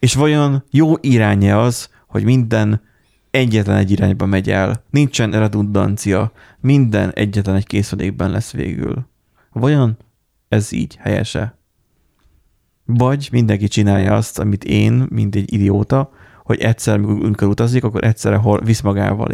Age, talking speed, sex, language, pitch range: 30-49, 125 wpm, male, Hungarian, 100-120 Hz